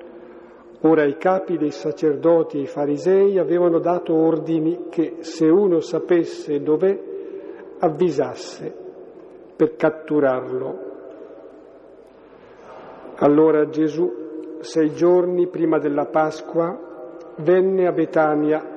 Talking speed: 95 wpm